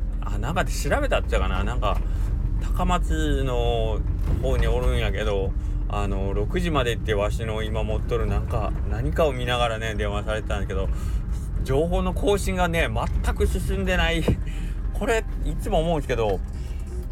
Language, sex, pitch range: Japanese, male, 75-115 Hz